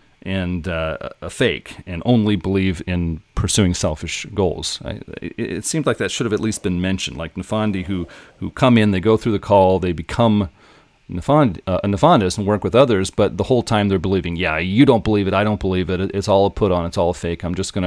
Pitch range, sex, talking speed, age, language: 85-105 Hz, male, 240 wpm, 40-59, English